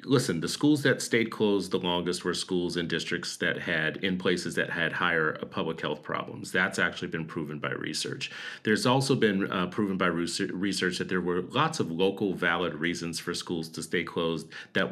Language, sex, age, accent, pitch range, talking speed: English, male, 40-59, American, 85-105 Hz, 195 wpm